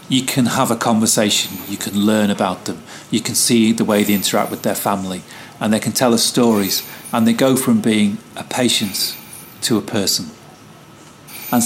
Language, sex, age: English, male, 40-59